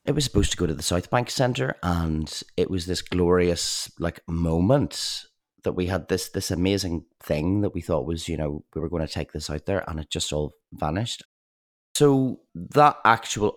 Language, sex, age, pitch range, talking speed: English, male, 30-49, 85-105 Hz, 205 wpm